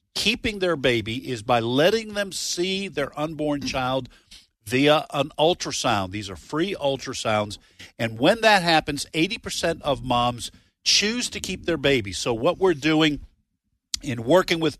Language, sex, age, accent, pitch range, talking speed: English, male, 50-69, American, 115-155 Hz, 150 wpm